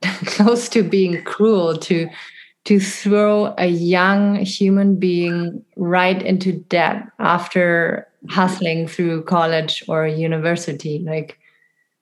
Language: English